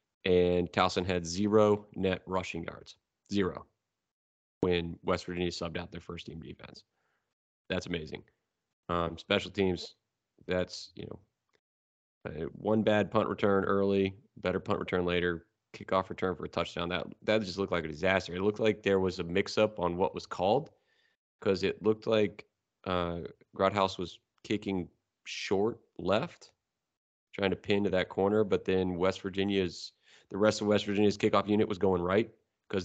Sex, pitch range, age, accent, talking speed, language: male, 90-105 Hz, 30-49, American, 160 wpm, English